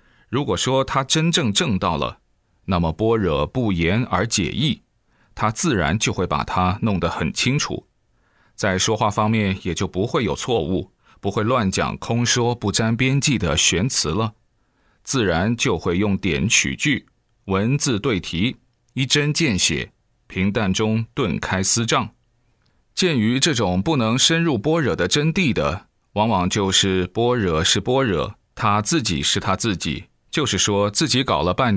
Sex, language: male, Chinese